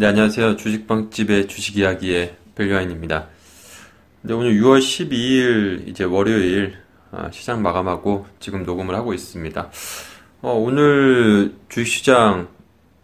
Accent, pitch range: native, 95-130 Hz